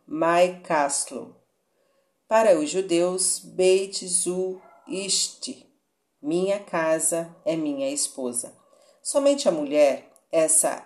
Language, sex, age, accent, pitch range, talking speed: Portuguese, female, 40-59, Brazilian, 160-210 Hz, 85 wpm